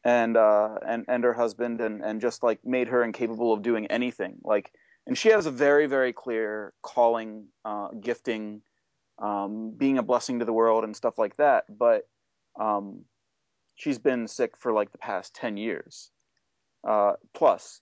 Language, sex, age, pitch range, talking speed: English, male, 30-49, 110-125 Hz, 170 wpm